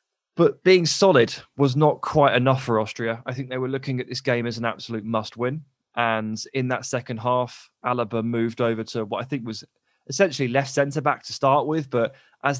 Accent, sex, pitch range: British, male, 110-135 Hz